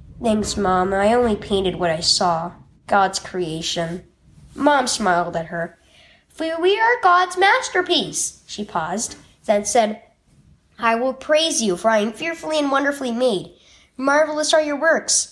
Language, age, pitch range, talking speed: English, 10-29, 200-310 Hz, 150 wpm